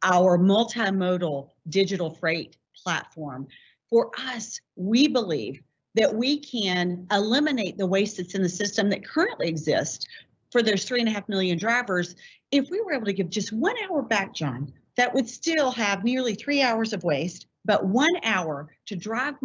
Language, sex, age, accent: English, female, 40-59, American